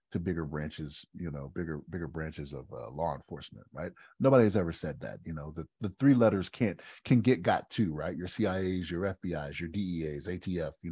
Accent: American